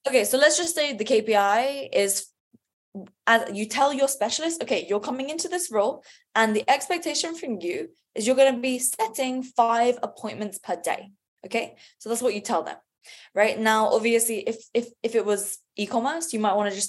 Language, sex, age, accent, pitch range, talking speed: English, female, 10-29, British, 205-260 Hz, 195 wpm